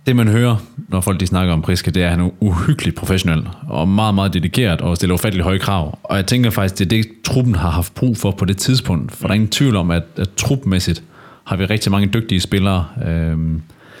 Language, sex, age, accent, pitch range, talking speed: Danish, male, 30-49, native, 90-110 Hz, 240 wpm